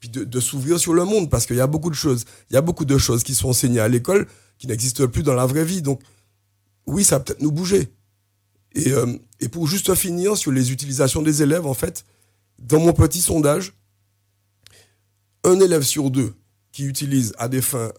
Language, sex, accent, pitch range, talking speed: French, male, French, 105-145 Hz, 215 wpm